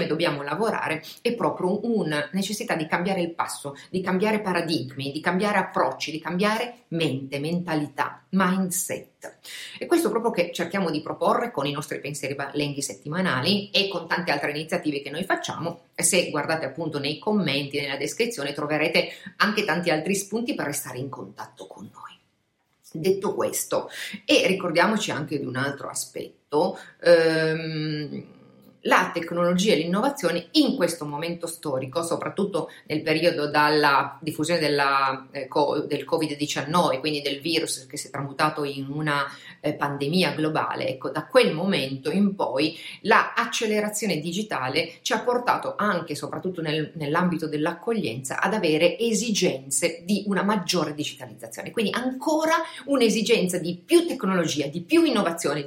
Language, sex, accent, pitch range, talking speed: Italian, female, native, 150-200 Hz, 145 wpm